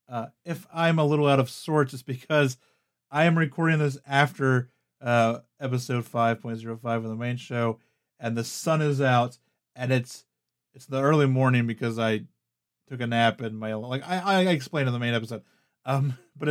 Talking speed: 180 wpm